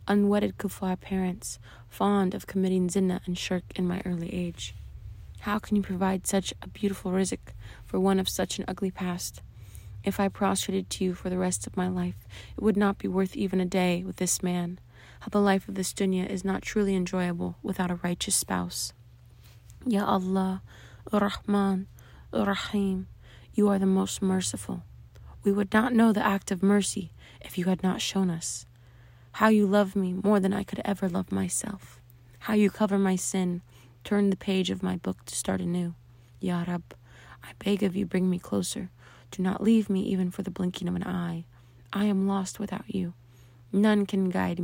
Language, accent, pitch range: English, American, 170-195 Hz